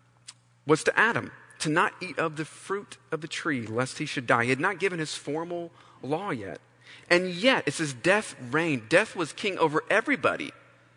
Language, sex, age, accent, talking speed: English, male, 40-59, American, 190 wpm